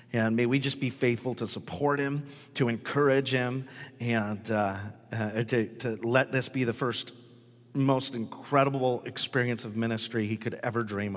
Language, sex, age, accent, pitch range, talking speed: English, male, 40-59, American, 115-140 Hz, 165 wpm